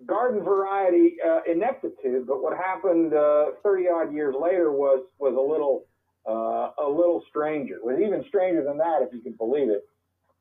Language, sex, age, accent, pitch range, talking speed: English, male, 50-69, American, 135-195 Hz, 185 wpm